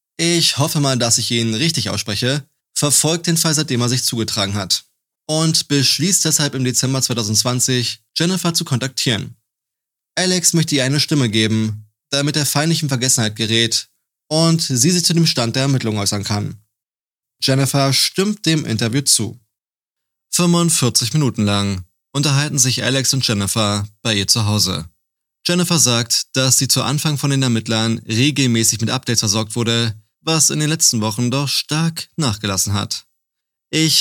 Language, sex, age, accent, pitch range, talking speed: German, male, 20-39, German, 110-140 Hz, 155 wpm